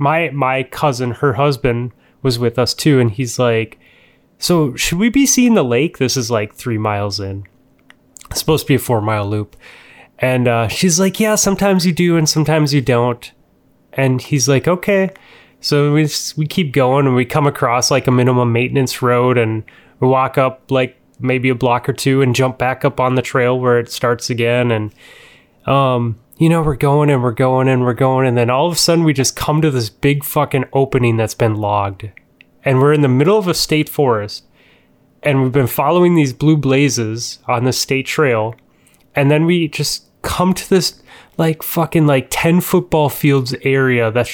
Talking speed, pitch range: 200 wpm, 120-150 Hz